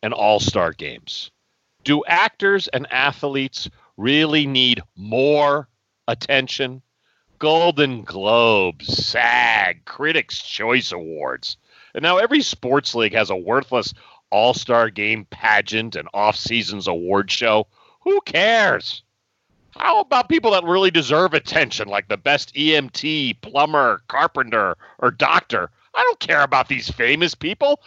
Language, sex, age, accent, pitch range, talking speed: English, male, 40-59, American, 115-185 Hz, 120 wpm